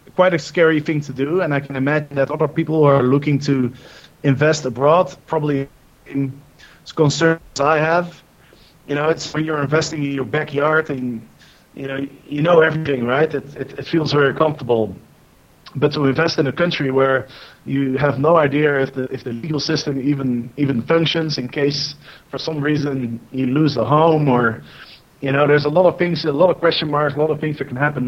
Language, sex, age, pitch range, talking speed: English, male, 30-49, 135-155 Hz, 205 wpm